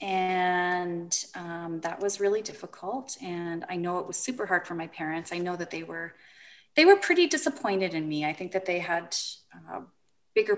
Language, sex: English, female